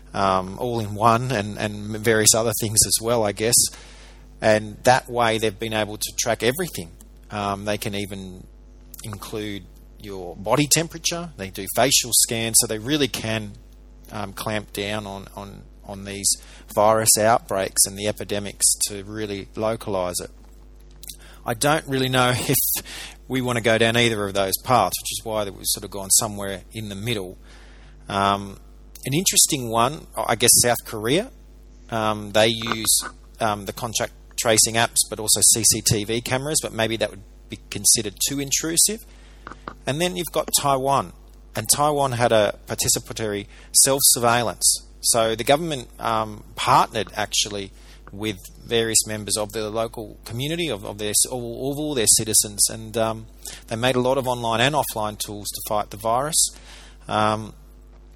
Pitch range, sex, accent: 105-120 Hz, male, Australian